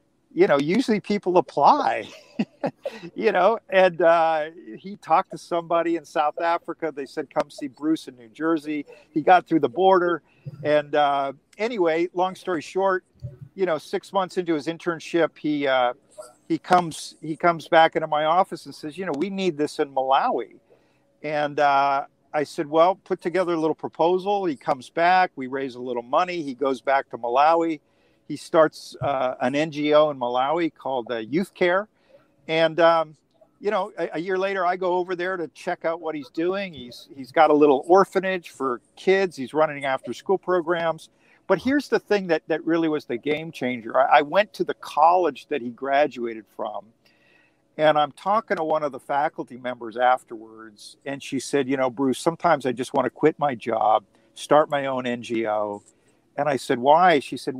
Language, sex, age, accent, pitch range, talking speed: English, male, 50-69, American, 135-180 Hz, 190 wpm